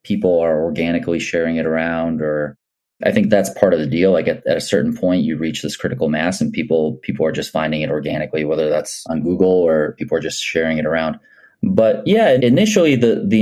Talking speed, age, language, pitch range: 220 wpm, 30-49, English, 80-100 Hz